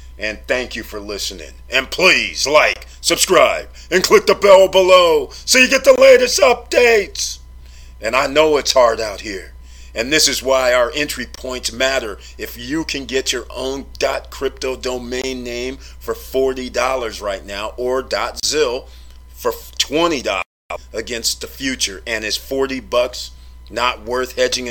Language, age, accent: English, 40-59, American